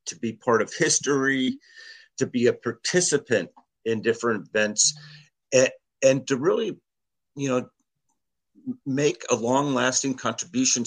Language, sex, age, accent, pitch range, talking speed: English, male, 50-69, American, 110-135 Hz, 120 wpm